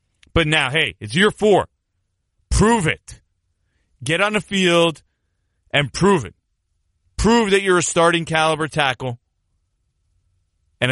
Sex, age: male, 30-49